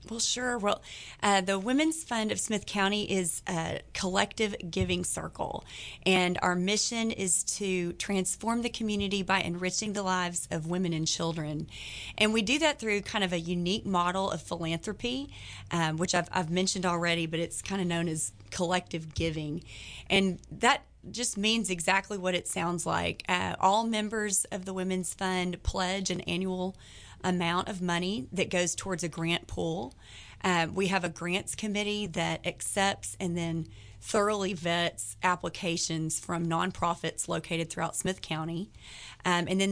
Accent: American